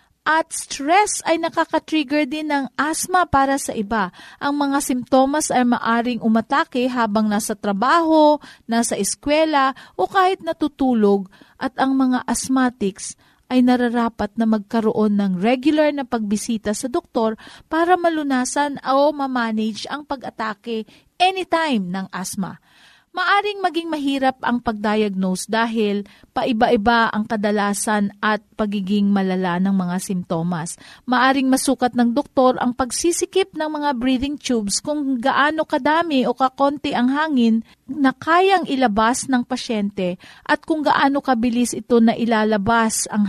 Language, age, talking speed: Filipino, 40-59, 130 wpm